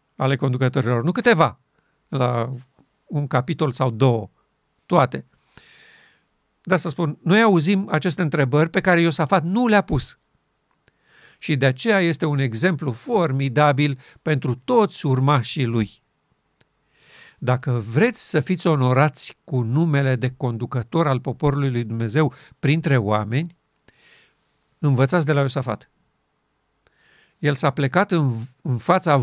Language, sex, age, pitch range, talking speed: Romanian, male, 50-69, 135-170 Hz, 120 wpm